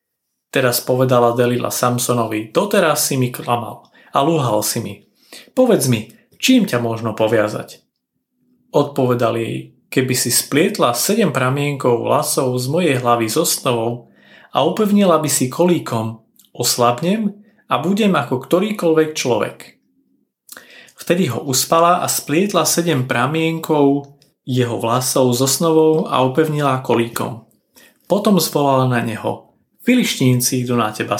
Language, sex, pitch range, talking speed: Slovak, male, 125-170 Hz, 125 wpm